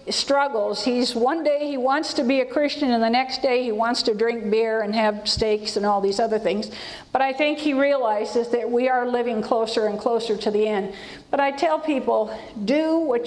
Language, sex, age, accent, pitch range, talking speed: English, female, 50-69, American, 230-295 Hz, 215 wpm